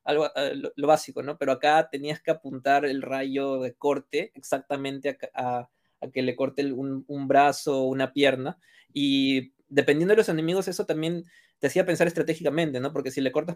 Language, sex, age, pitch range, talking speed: Spanish, male, 20-39, 130-155 Hz, 180 wpm